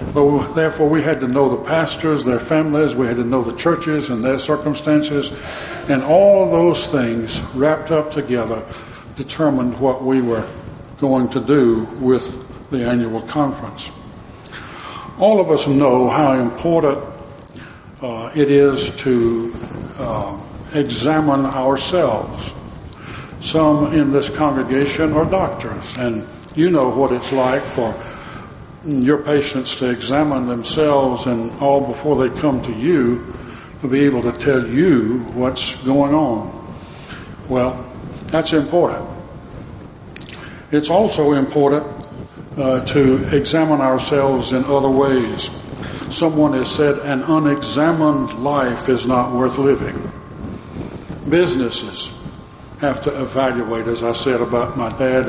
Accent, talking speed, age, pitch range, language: American, 125 wpm, 60-79, 120-150 Hz, English